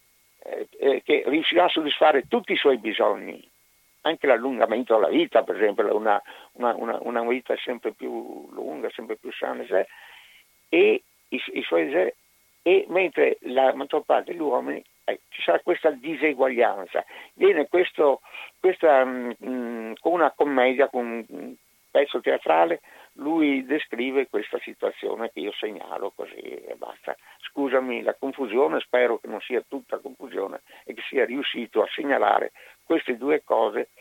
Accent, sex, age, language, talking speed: native, male, 50-69, Italian, 140 wpm